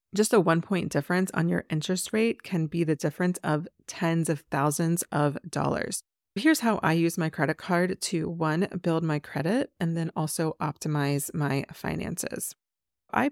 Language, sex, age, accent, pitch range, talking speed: English, female, 30-49, American, 150-185 Hz, 170 wpm